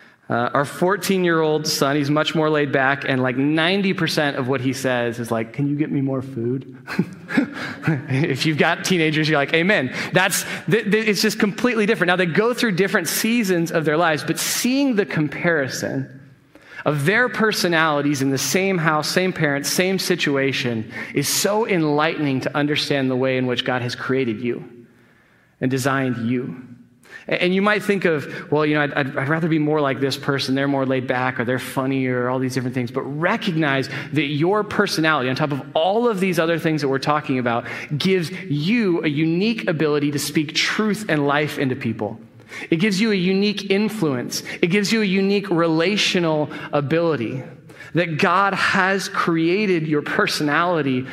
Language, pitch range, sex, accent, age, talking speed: English, 135-185 Hz, male, American, 30-49, 180 wpm